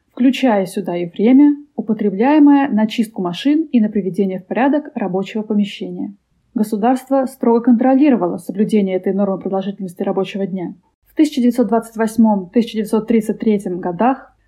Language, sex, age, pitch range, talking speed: Russian, female, 20-39, 195-250 Hz, 110 wpm